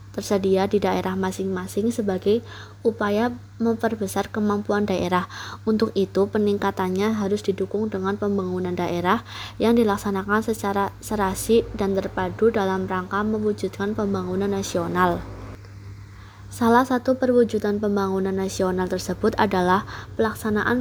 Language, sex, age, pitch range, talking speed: Indonesian, female, 20-39, 185-220 Hz, 105 wpm